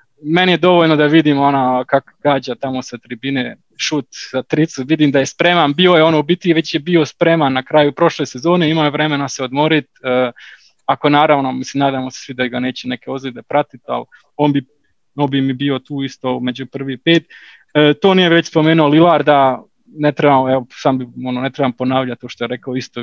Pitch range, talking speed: 130-155 Hz, 210 wpm